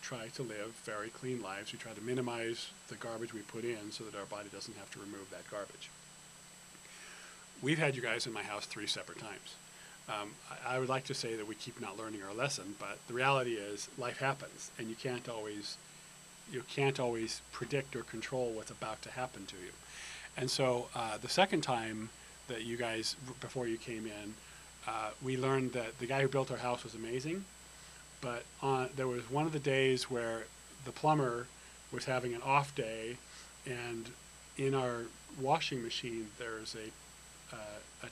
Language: English